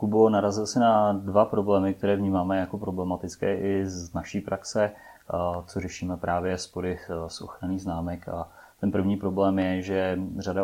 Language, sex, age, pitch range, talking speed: Czech, male, 30-49, 85-95 Hz, 145 wpm